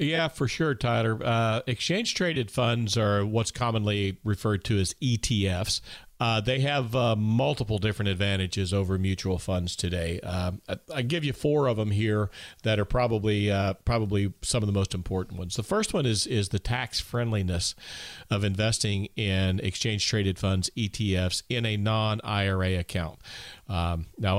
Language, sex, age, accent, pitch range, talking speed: English, male, 40-59, American, 95-120 Hz, 165 wpm